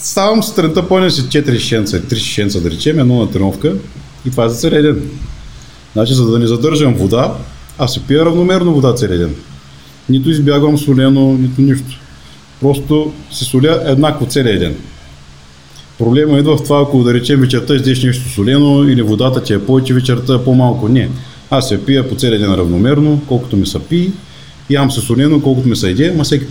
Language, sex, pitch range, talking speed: Bulgarian, male, 105-140 Hz, 180 wpm